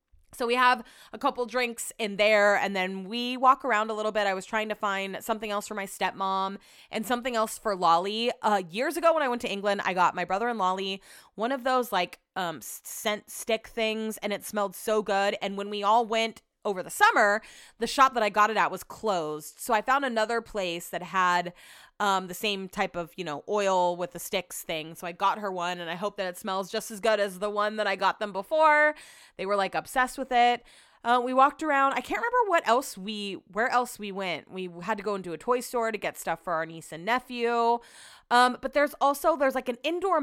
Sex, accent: female, American